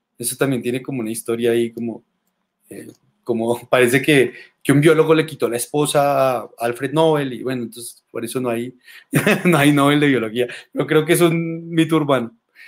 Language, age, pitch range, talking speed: Spanish, 30-49, 130-175 Hz, 200 wpm